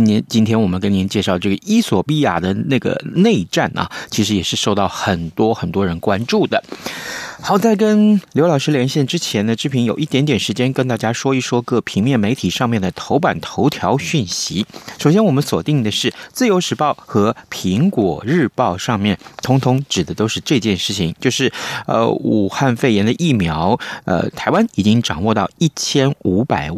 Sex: male